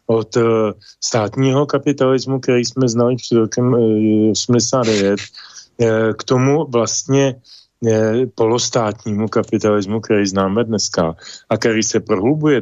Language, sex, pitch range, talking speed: Slovak, male, 100-120 Hz, 100 wpm